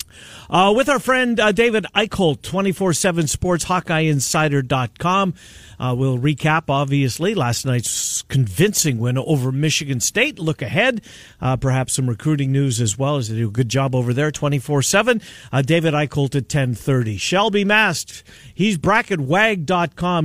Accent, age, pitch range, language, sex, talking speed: American, 50-69, 130-175 Hz, English, male, 145 wpm